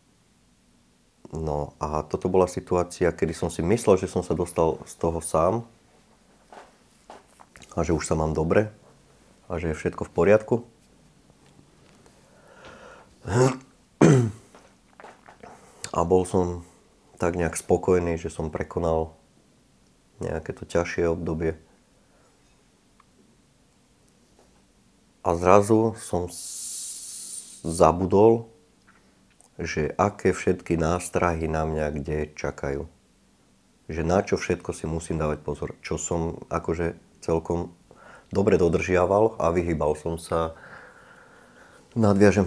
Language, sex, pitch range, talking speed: Slovak, male, 80-95 Hz, 100 wpm